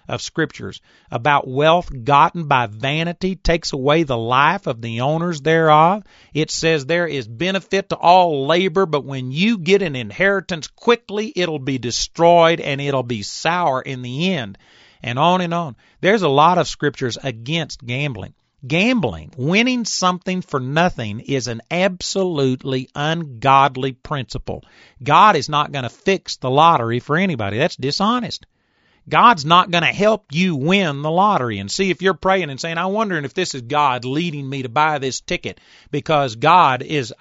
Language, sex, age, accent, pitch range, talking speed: English, male, 40-59, American, 135-180 Hz, 170 wpm